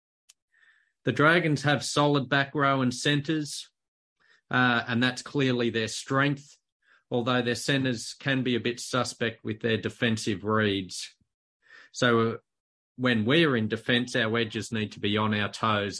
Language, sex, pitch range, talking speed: English, male, 110-125 Hz, 145 wpm